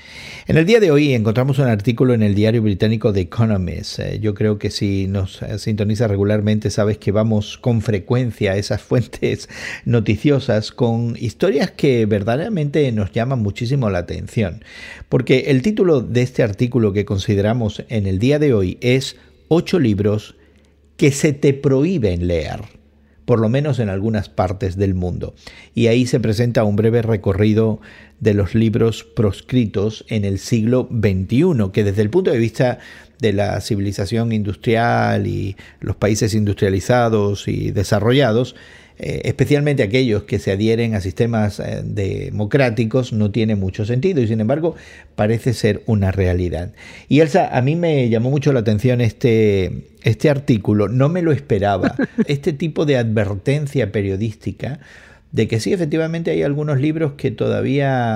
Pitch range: 105-130 Hz